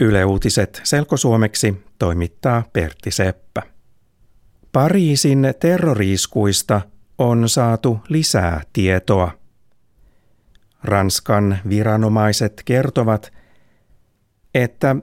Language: Finnish